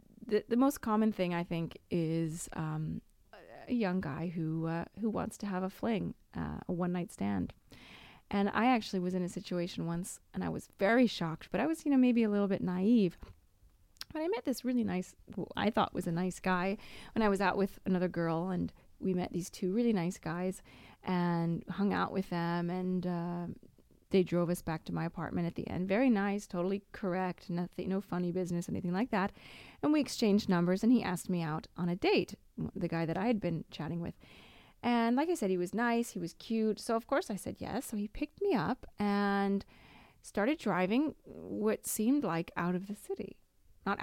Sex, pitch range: female, 175-220 Hz